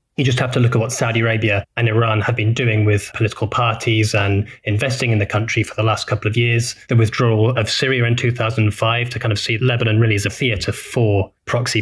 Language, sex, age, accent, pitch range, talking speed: English, male, 20-39, British, 105-125 Hz, 230 wpm